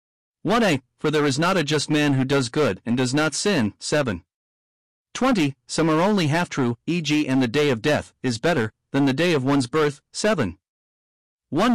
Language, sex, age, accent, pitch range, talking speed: English, male, 50-69, American, 125-170 Hz, 190 wpm